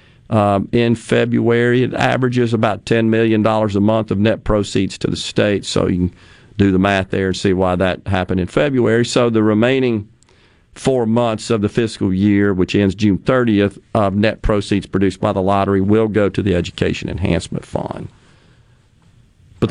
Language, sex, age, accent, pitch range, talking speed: English, male, 50-69, American, 105-125 Hz, 175 wpm